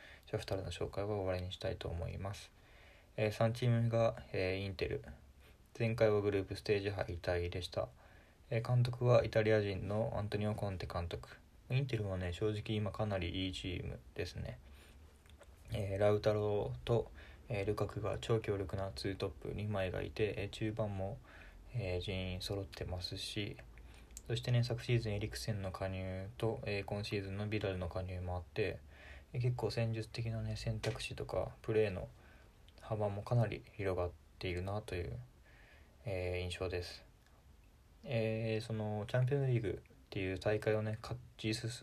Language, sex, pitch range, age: Japanese, male, 95-110 Hz, 20-39